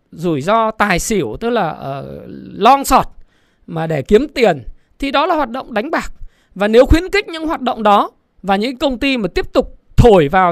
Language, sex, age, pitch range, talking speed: Vietnamese, male, 20-39, 205-295 Hz, 210 wpm